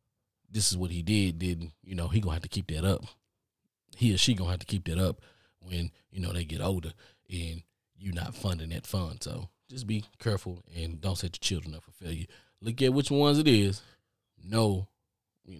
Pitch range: 95-115 Hz